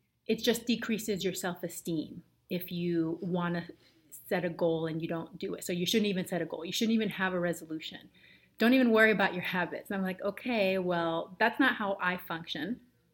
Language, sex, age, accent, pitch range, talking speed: English, female, 30-49, American, 170-210 Hz, 210 wpm